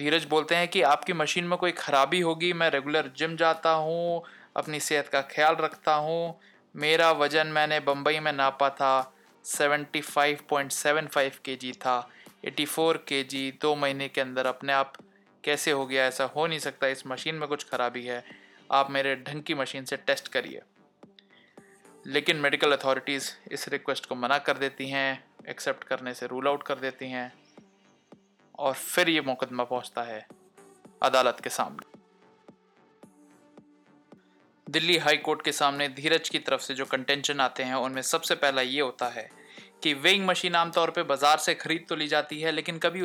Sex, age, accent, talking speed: male, 20-39, native, 170 wpm